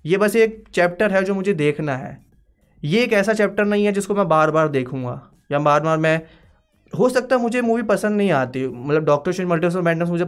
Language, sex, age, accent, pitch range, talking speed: Hindi, male, 20-39, native, 140-185 Hz, 230 wpm